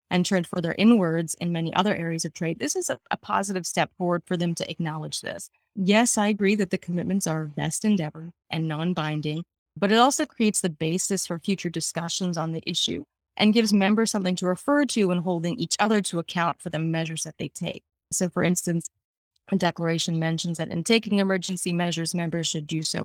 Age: 30-49